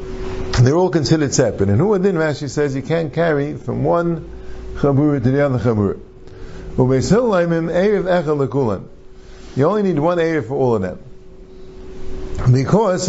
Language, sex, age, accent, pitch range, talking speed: English, male, 50-69, American, 115-185 Hz, 135 wpm